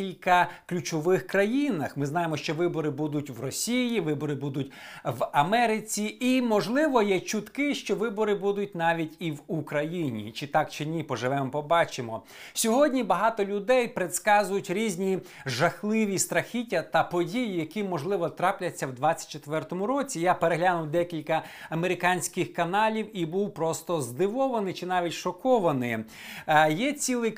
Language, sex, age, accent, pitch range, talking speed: Ukrainian, male, 50-69, native, 165-215 Hz, 130 wpm